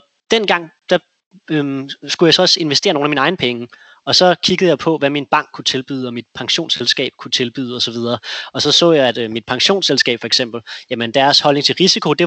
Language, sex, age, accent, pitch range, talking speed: Danish, male, 20-39, native, 135-165 Hz, 225 wpm